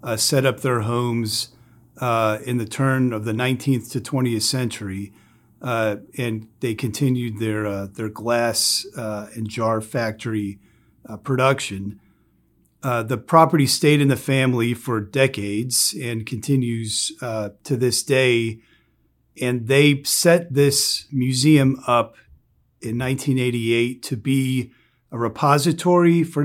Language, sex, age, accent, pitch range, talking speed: English, male, 40-59, American, 115-135 Hz, 130 wpm